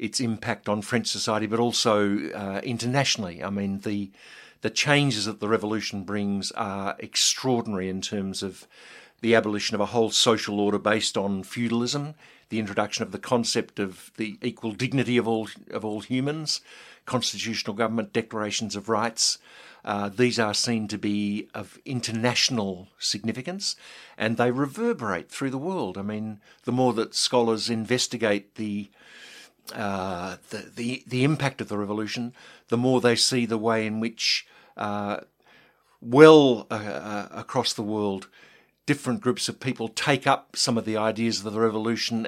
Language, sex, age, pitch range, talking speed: English, male, 50-69, 105-120 Hz, 155 wpm